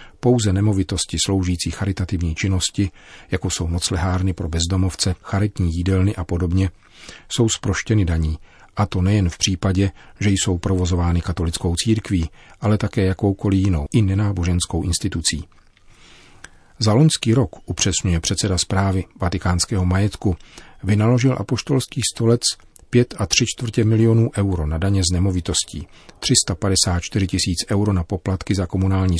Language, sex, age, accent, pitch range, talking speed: Czech, male, 40-59, native, 90-105 Hz, 125 wpm